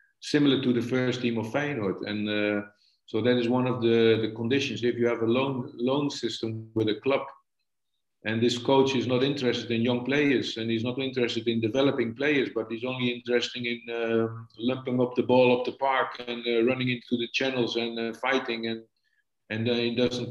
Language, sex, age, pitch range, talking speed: English, male, 50-69, 115-135 Hz, 205 wpm